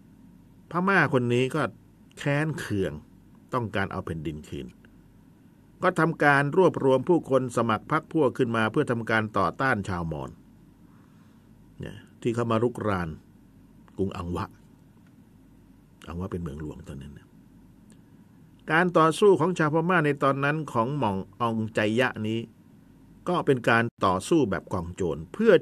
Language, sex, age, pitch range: Thai, male, 50-69, 110-160 Hz